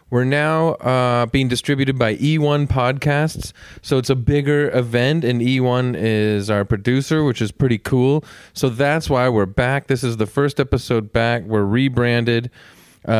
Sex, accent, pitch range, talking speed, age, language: male, American, 110-135 Hz, 160 wpm, 30-49, English